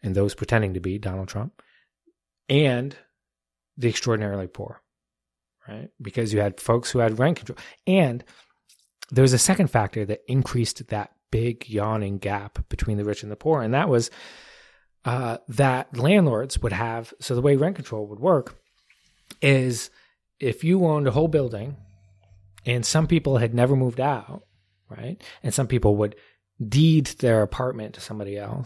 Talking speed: 165 wpm